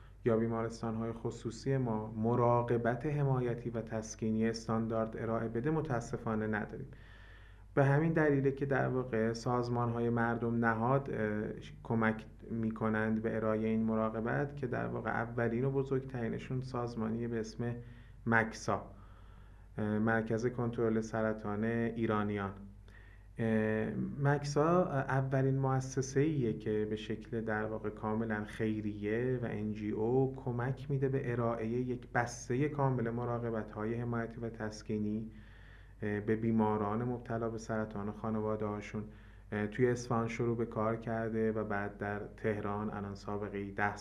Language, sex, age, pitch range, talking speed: Persian, male, 30-49, 110-120 Hz, 120 wpm